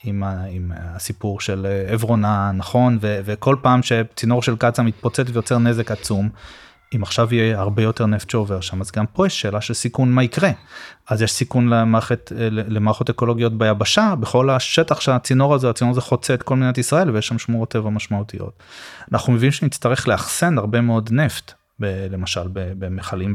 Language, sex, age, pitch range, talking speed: Hebrew, male, 20-39, 105-130 Hz, 165 wpm